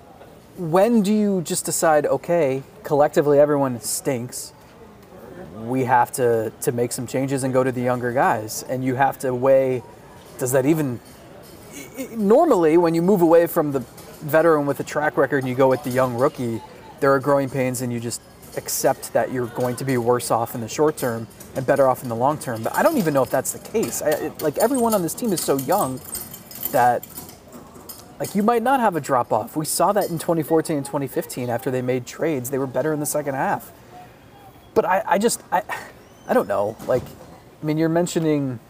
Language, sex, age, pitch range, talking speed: English, male, 20-39, 120-155 Hz, 210 wpm